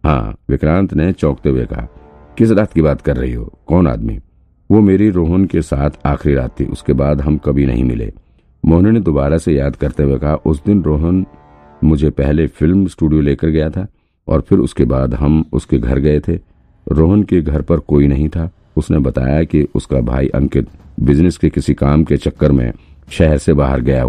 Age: 50-69